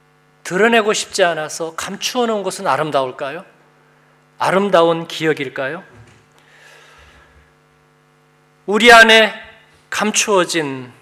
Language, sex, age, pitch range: Korean, male, 40-59, 160-210 Hz